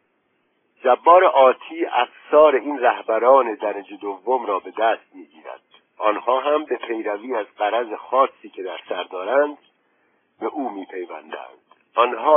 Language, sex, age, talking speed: Persian, male, 60-79, 125 wpm